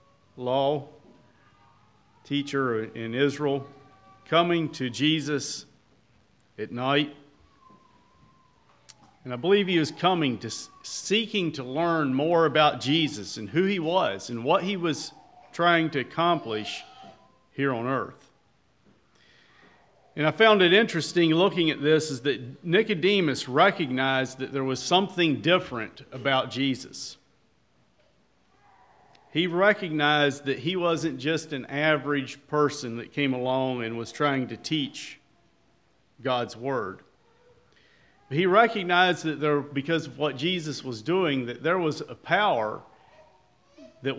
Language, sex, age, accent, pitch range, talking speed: English, male, 50-69, American, 130-165 Hz, 125 wpm